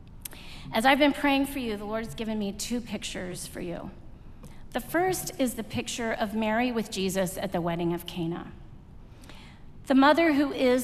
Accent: American